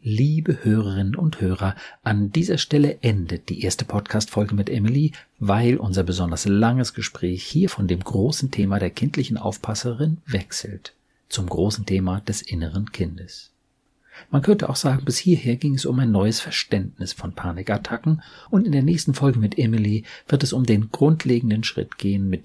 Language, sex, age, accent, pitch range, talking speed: German, male, 50-69, German, 95-135 Hz, 165 wpm